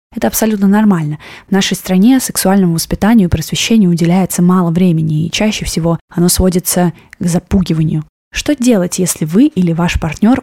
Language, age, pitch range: Russian, 20-39, 175-220 Hz